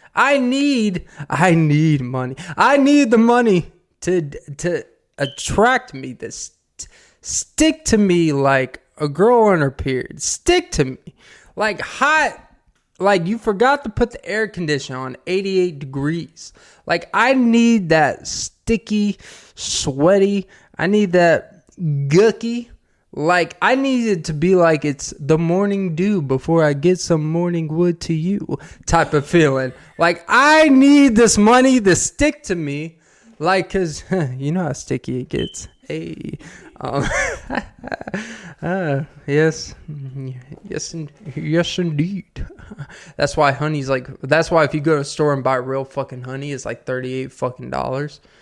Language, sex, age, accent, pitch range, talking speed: English, male, 20-39, American, 145-205 Hz, 145 wpm